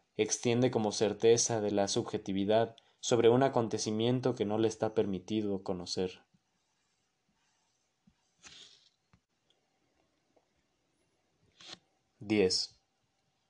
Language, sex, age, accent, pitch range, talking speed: Spanish, male, 20-39, Mexican, 100-120 Hz, 70 wpm